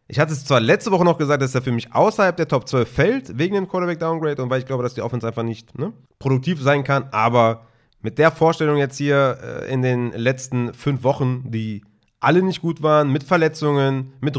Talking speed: 215 wpm